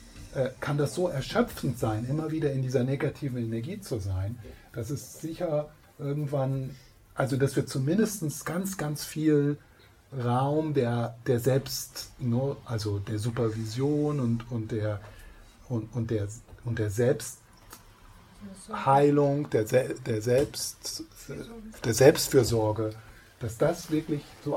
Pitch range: 110-145 Hz